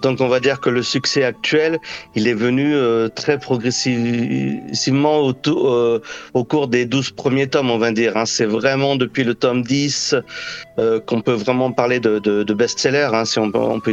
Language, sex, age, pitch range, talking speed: French, male, 40-59, 110-125 Hz, 205 wpm